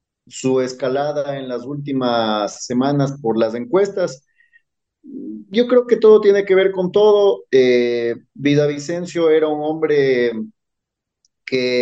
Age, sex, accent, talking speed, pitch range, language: 40-59, male, Mexican, 125 wpm, 125-160 Hz, Spanish